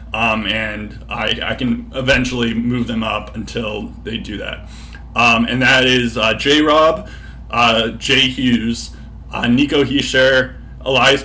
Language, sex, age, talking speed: English, male, 20-39, 145 wpm